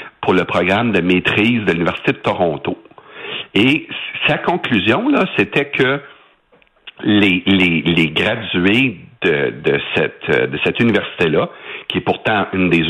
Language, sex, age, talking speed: French, male, 60-79, 140 wpm